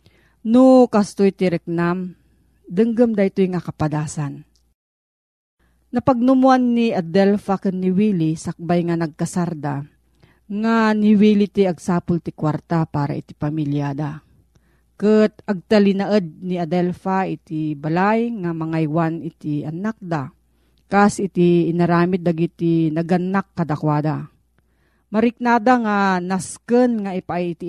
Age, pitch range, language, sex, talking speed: 40-59, 165-215 Hz, Filipino, female, 105 wpm